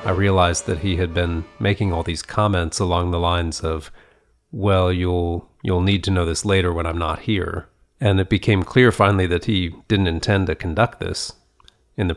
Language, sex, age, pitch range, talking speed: English, male, 40-59, 85-100 Hz, 195 wpm